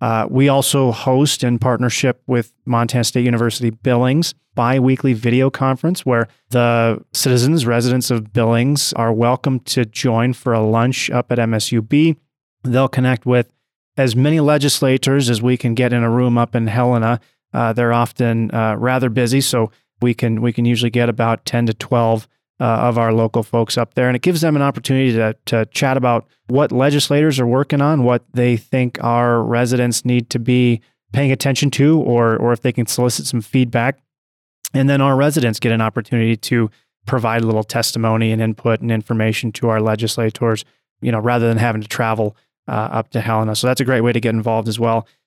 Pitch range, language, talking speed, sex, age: 115-130 Hz, English, 190 wpm, male, 30-49